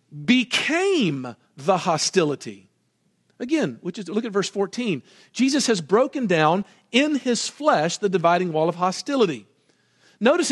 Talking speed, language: 130 wpm, English